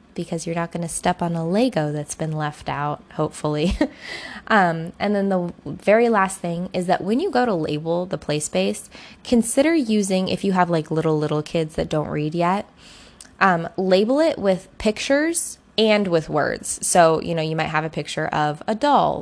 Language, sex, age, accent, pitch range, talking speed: English, female, 10-29, American, 160-210 Hz, 195 wpm